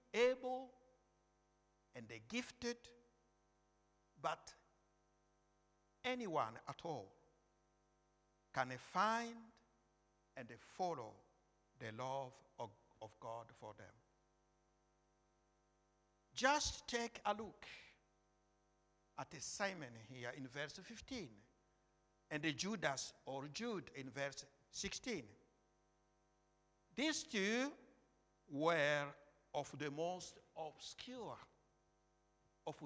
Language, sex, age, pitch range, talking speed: English, male, 60-79, 135-220 Hz, 85 wpm